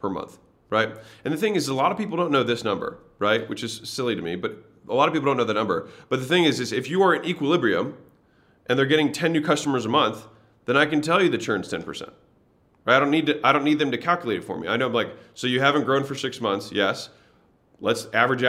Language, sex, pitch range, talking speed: English, male, 110-145 Hz, 275 wpm